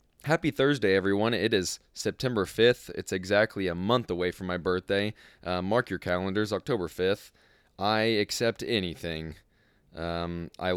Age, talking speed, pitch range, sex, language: 20-39, 145 wpm, 90-110 Hz, male, English